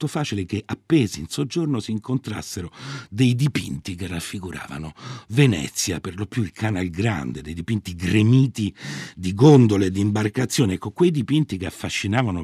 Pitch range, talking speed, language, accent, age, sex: 80-115 Hz, 150 wpm, Italian, native, 60-79, male